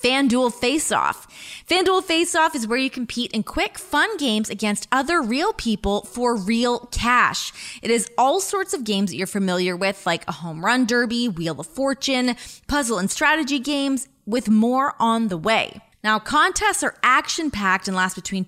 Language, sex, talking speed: English, female, 175 wpm